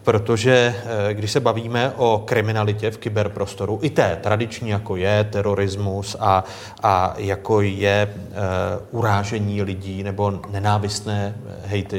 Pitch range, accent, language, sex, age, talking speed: 100-115 Hz, native, Czech, male, 30-49, 115 wpm